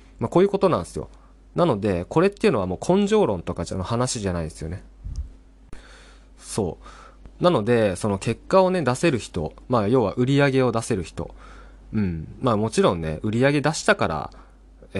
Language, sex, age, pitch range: Japanese, male, 20-39, 100-150 Hz